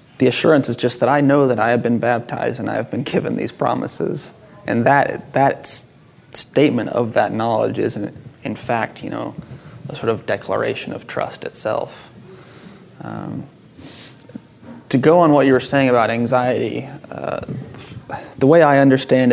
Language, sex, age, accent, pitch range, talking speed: English, male, 20-39, American, 115-135 Hz, 170 wpm